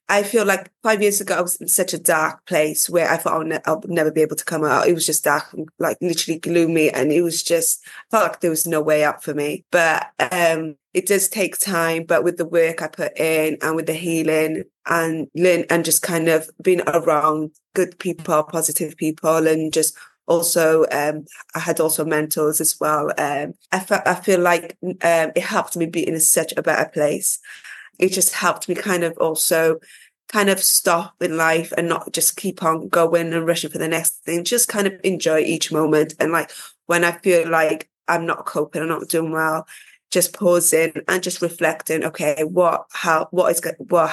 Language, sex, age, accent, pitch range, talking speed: English, female, 20-39, British, 155-180 Hz, 210 wpm